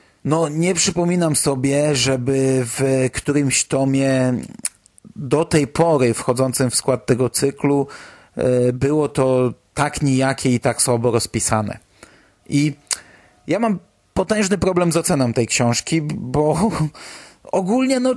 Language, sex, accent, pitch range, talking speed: Polish, male, native, 135-170 Hz, 115 wpm